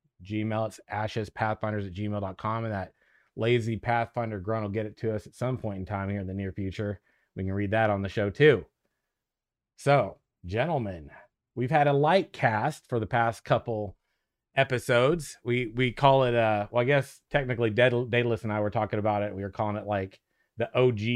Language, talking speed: English, 195 wpm